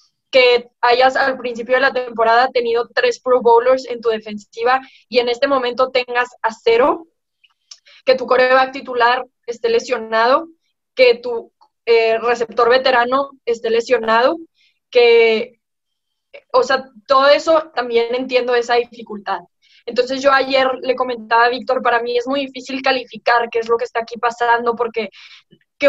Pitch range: 235-275 Hz